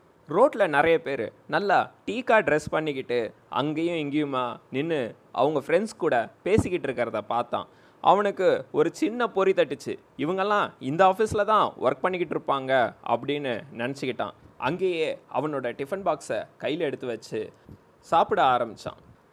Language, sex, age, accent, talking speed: Tamil, male, 20-39, native, 120 wpm